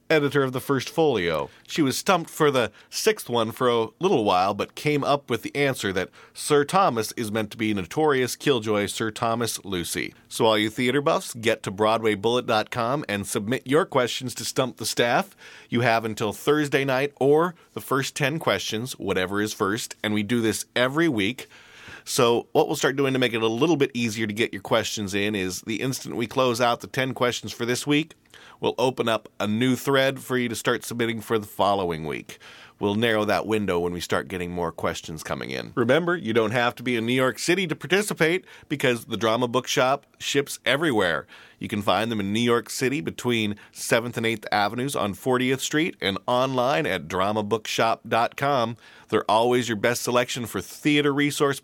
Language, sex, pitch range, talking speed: English, male, 110-140 Hz, 200 wpm